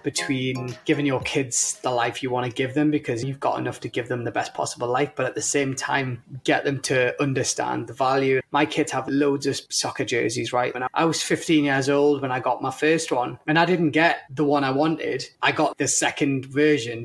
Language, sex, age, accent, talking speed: English, male, 20-39, British, 230 wpm